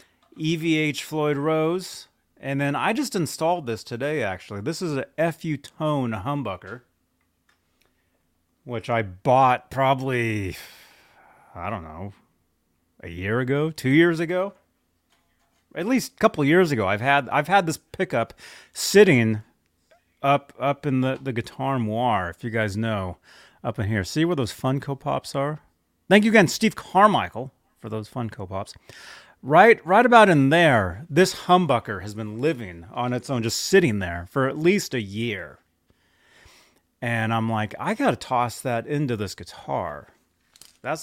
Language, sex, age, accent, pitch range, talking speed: English, male, 30-49, American, 110-155 Hz, 155 wpm